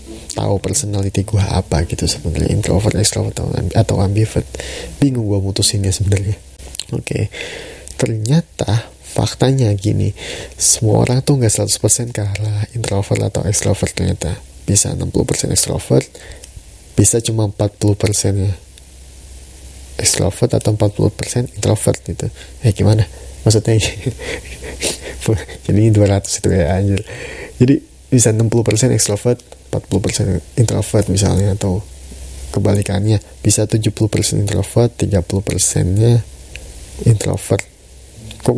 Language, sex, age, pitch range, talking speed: Indonesian, male, 30-49, 95-115 Hz, 100 wpm